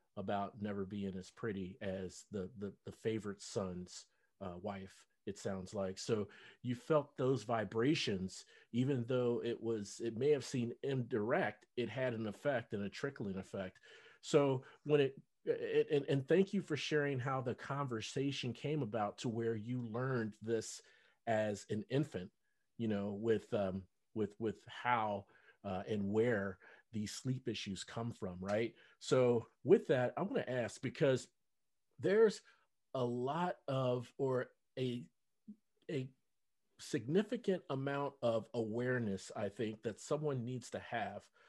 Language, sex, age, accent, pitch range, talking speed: English, male, 40-59, American, 105-130 Hz, 150 wpm